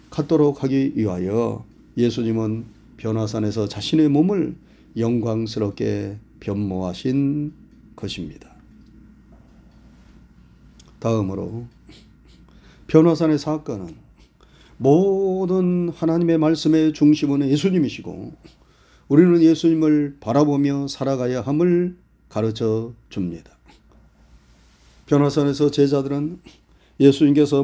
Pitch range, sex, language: 115-155 Hz, male, Korean